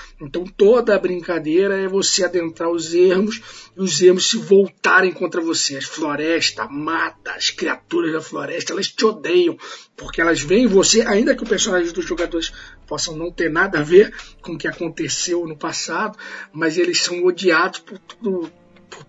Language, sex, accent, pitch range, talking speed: Portuguese, male, Brazilian, 160-210 Hz, 165 wpm